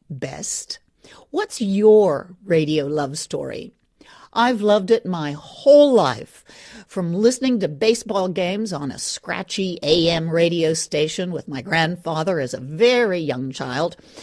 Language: English